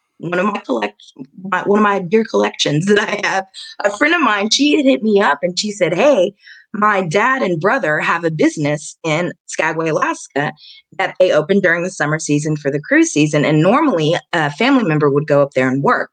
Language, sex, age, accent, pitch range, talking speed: English, female, 20-39, American, 145-205 Hz, 195 wpm